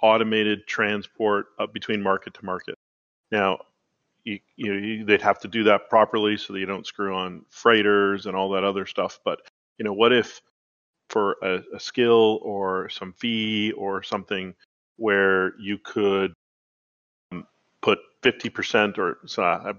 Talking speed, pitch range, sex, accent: 160 wpm, 95-110 Hz, male, American